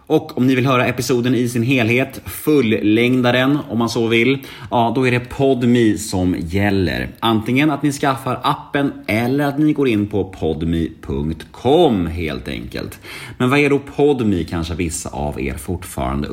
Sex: male